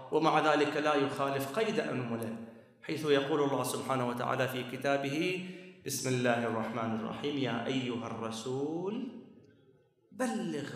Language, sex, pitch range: Arabic, male, 140-235 Hz